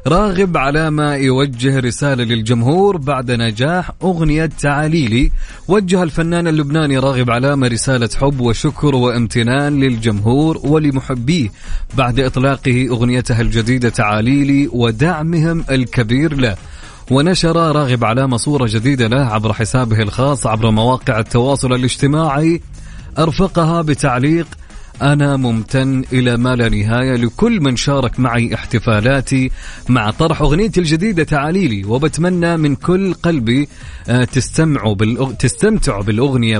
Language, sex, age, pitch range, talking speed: Arabic, male, 30-49, 120-155 Hz, 110 wpm